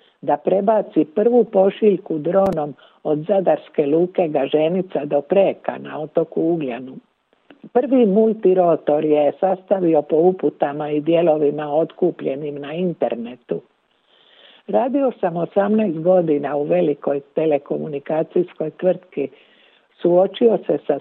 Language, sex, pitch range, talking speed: Croatian, female, 150-195 Hz, 105 wpm